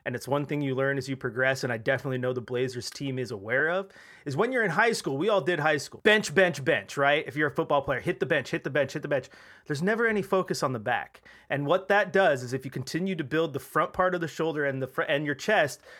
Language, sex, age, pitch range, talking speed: English, male, 30-49, 125-155 Hz, 290 wpm